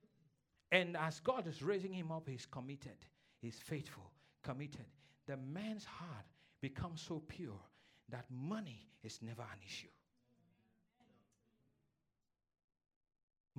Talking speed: 105 wpm